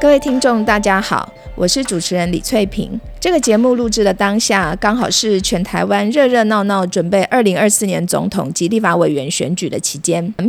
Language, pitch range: Chinese, 190-245 Hz